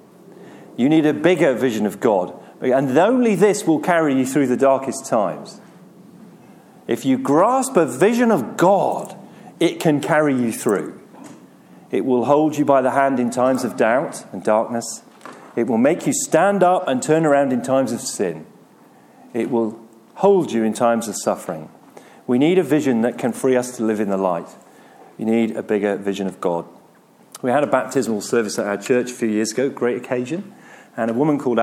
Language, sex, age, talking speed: English, male, 40-59, 195 wpm